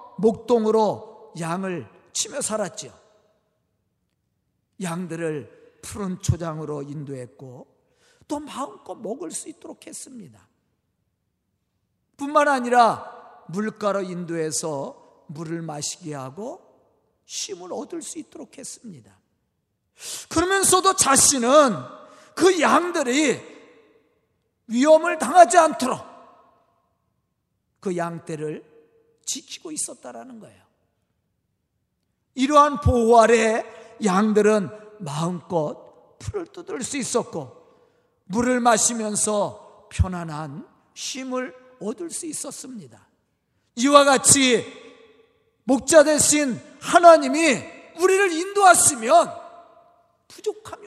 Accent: native